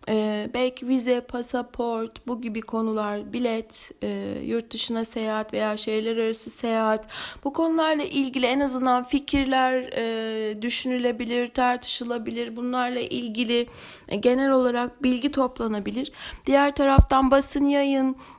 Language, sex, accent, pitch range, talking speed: Turkish, female, native, 225-260 Hz, 105 wpm